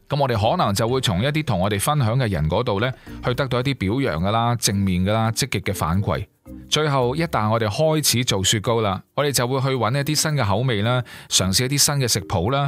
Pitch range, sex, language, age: 100-135 Hz, male, Chinese, 30-49